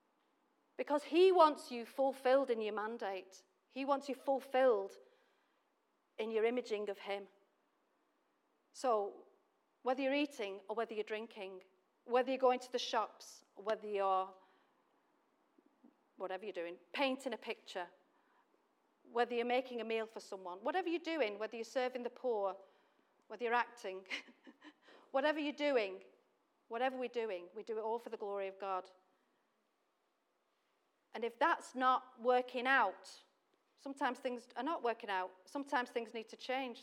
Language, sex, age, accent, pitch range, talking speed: English, female, 40-59, British, 210-265 Hz, 145 wpm